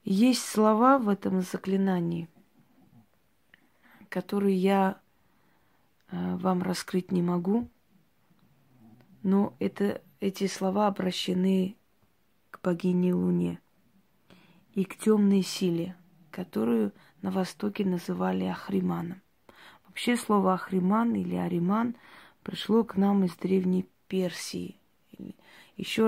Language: Russian